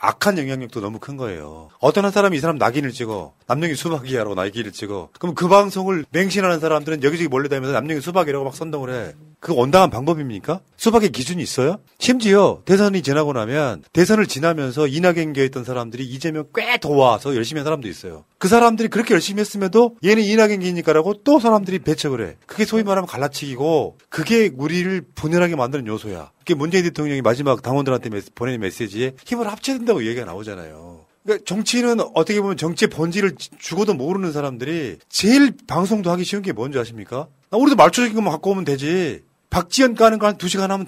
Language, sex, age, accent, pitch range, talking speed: English, male, 30-49, Korean, 140-195 Hz, 160 wpm